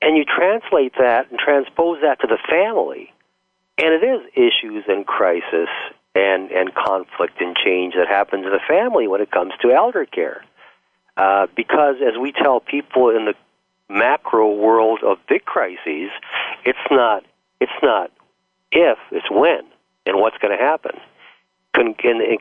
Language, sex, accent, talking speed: English, male, American, 155 wpm